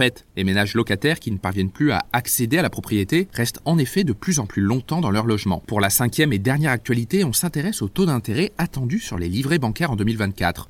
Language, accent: French, French